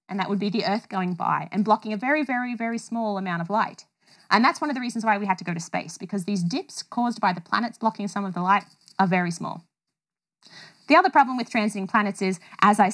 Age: 20-39